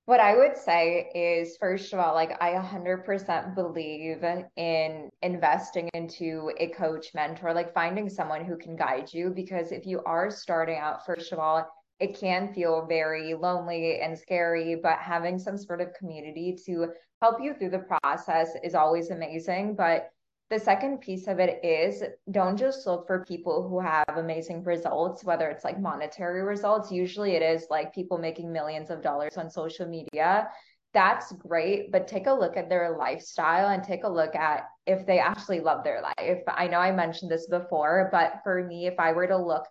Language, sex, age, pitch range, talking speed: English, female, 20-39, 165-185 Hz, 185 wpm